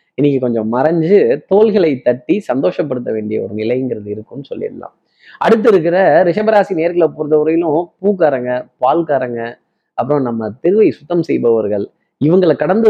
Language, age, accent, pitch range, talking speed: Tamil, 20-39, native, 130-175 Hz, 115 wpm